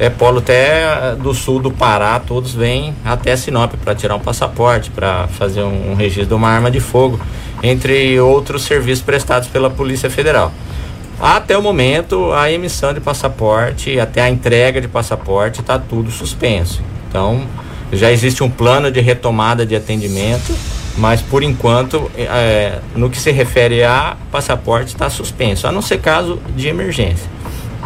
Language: Portuguese